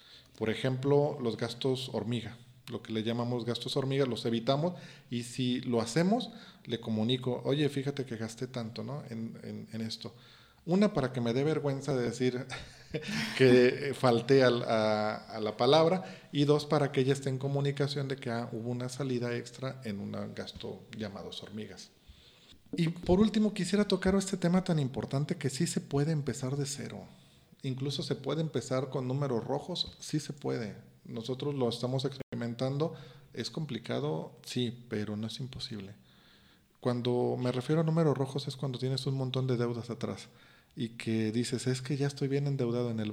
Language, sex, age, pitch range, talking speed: Spanish, male, 40-59, 115-140 Hz, 175 wpm